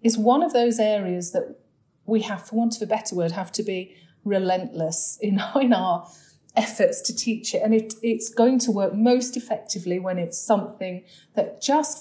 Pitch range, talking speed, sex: 175-230 Hz, 185 wpm, female